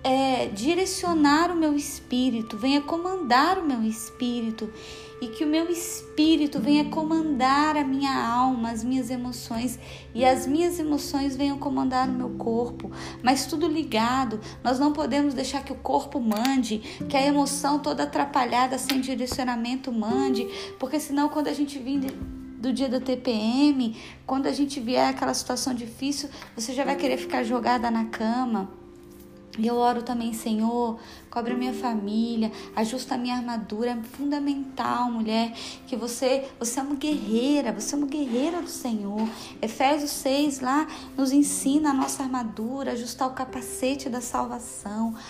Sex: female